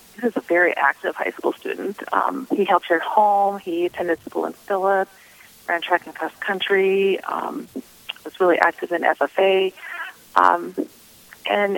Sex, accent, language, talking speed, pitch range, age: female, American, English, 165 wpm, 175-230 Hz, 40-59